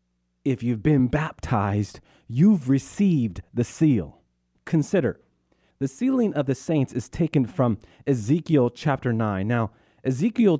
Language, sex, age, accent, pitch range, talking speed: English, male, 40-59, American, 110-155 Hz, 125 wpm